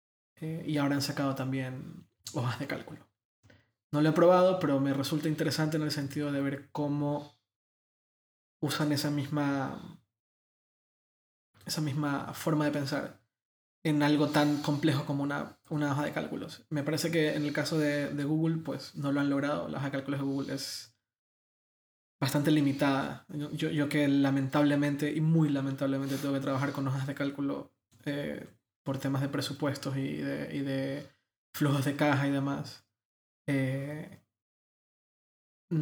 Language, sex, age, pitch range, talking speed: Spanish, male, 20-39, 135-150 Hz, 155 wpm